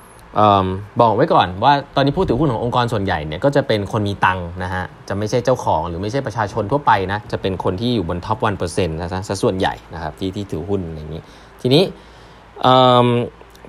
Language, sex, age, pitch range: Thai, male, 20-39, 100-140 Hz